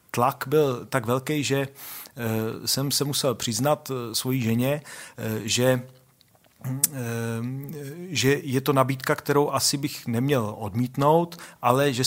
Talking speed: 115 wpm